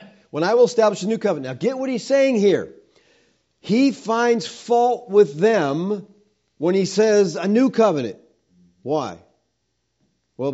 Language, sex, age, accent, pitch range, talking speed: English, male, 50-69, American, 140-215 Hz, 150 wpm